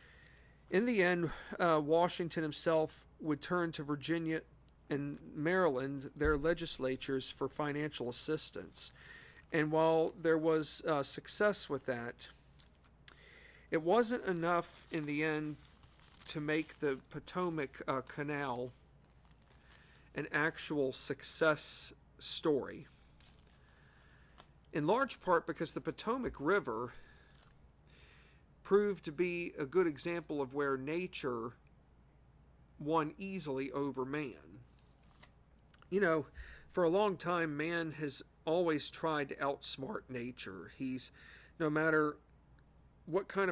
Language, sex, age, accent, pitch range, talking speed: English, male, 50-69, American, 140-165 Hz, 110 wpm